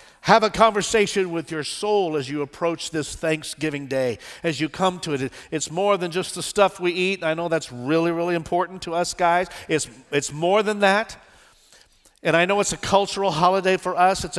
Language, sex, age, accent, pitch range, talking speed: English, male, 50-69, American, 170-235 Hz, 205 wpm